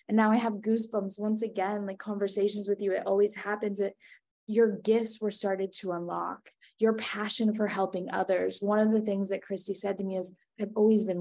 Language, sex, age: English, female, 20-39